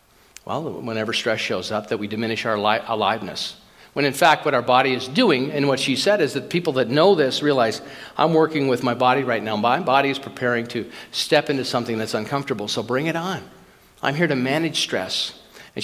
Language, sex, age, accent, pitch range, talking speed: English, male, 50-69, American, 125-155 Hz, 210 wpm